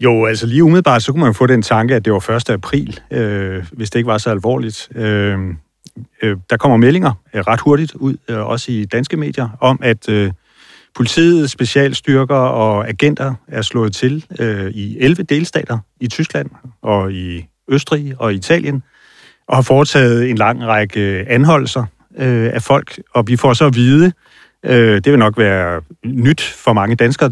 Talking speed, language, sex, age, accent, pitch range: 180 wpm, Danish, male, 30-49, native, 110-135 Hz